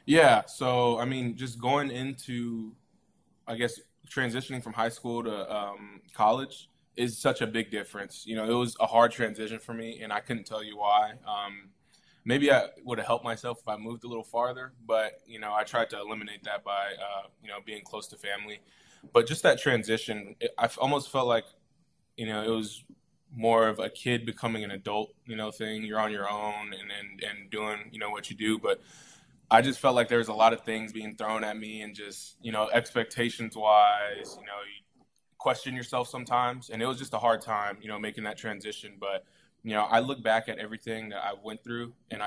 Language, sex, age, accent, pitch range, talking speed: English, male, 20-39, American, 105-120 Hz, 215 wpm